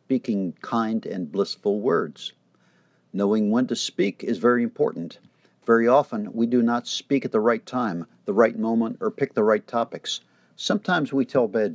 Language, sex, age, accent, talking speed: English, male, 50-69, American, 175 wpm